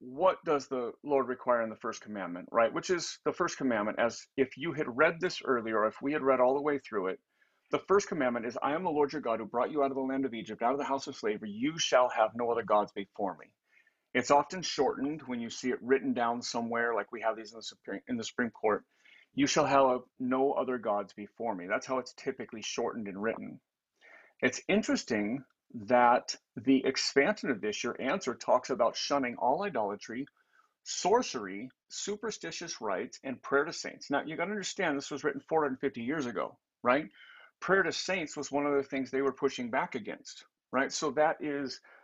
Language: English